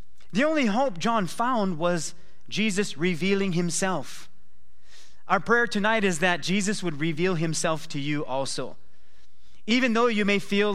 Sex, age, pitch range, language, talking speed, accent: male, 30-49, 140-190 Hz, English, 145 wpm, American